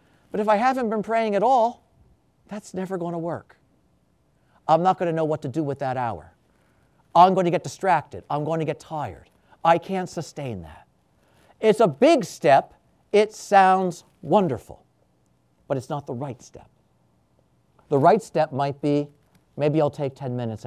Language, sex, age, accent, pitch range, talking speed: English, male, 50-69, American, 120-190 Hz, 175 wpm